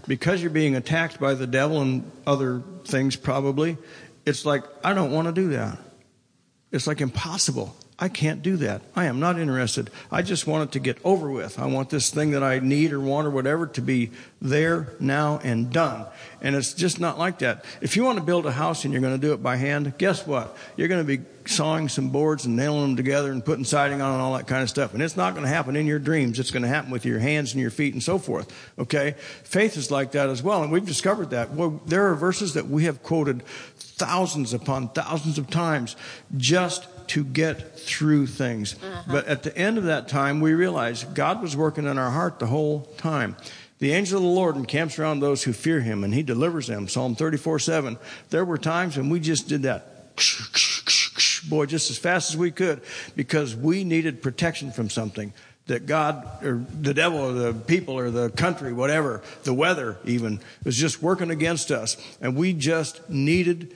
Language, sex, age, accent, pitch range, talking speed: English, male, 50-69, American, 130-165 Hz, 215 wpm